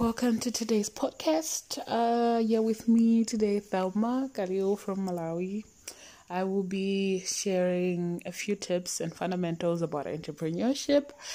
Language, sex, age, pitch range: English, female, 20-39, 145-185 Hz